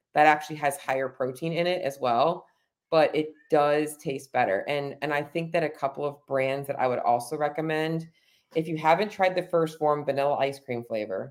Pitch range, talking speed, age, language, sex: 130-155 Hz, 205 wpm, 20-39, English, female